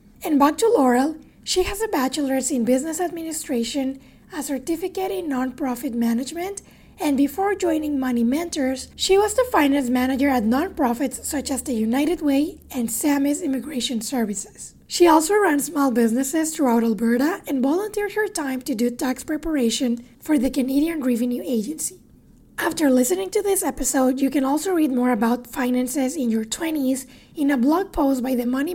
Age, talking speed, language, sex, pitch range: 20-39, 165 wpm, English, female, 255-320 Hz